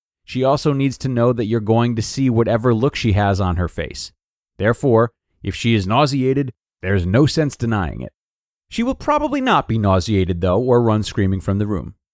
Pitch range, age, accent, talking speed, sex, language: 100-140 Hz, 30-49, American, 200 wpm, male, English